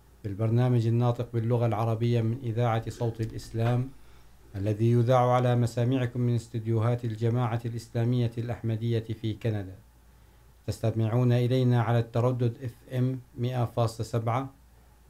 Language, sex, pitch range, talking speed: Urdu, male, 115-125 Hz, 100 wpm